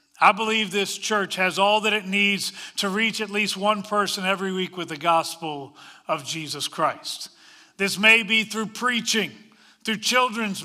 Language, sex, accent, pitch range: English, male, American, 175-230 Hz